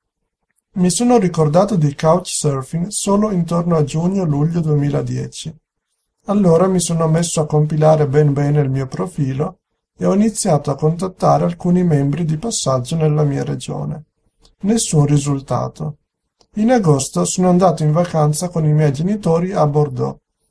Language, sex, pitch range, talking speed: Italian, male, 150-180 Hz, 140 wpm